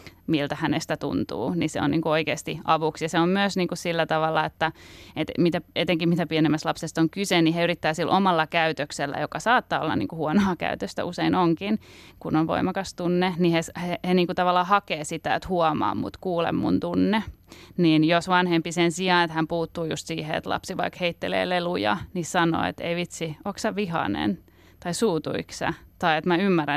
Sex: female